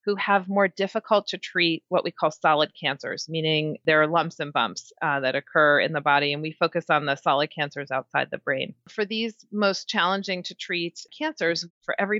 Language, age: English, 30-49